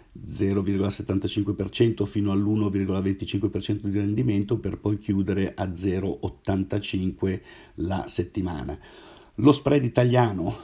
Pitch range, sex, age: 100-115 Hz, male, 50-69